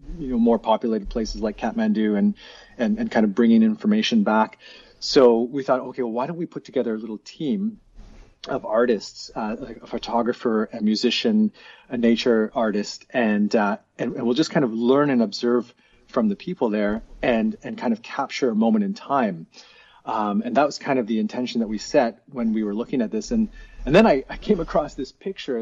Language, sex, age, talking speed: English, male, 30-49, 210 wpm